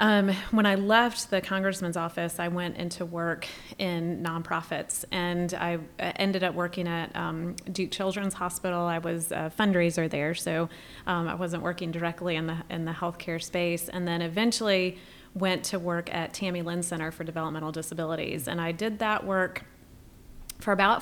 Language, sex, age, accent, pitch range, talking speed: English, female, 30-49, American, 165-185 Hz, 170 wpm